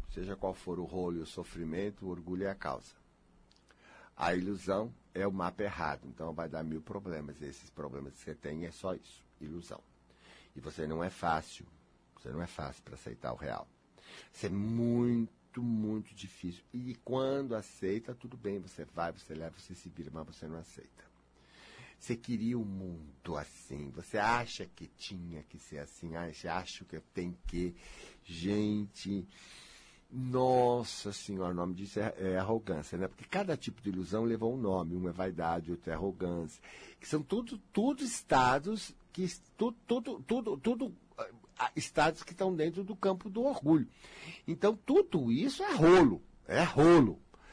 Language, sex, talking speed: Portuguese, male, 160 wpm